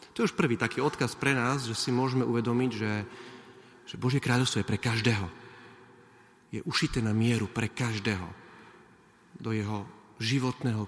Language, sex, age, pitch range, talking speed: Slovak, male, 40-59, 115-155 Hz, 155 wpm